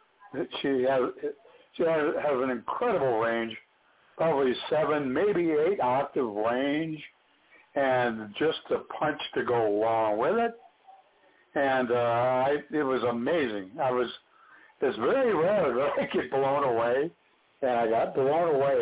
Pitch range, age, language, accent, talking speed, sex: 130-185 Hz, 60-79, English, American, 140 wpm, male